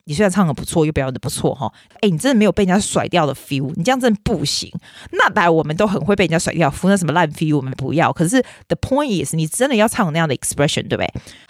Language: Chinese